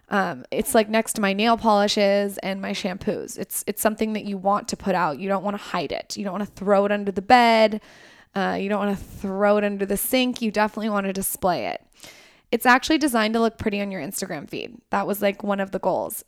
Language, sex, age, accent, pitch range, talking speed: English, female, 20-39, American, 200-240 Hz, 250 wpm